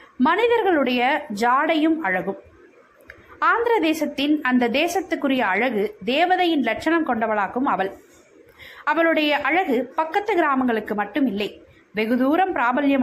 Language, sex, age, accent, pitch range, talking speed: Tamil, female, 20-39, native, 240-335 Hz, 95 wpm